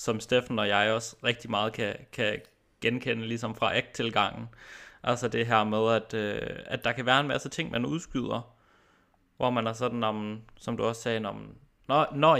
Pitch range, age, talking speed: 110-125 Hz, 20-39, 190 wpm